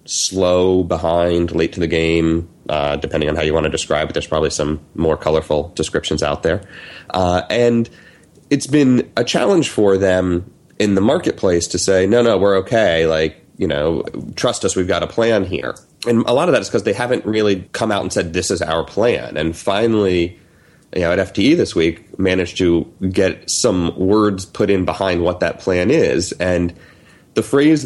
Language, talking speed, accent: English, 195 wpm, American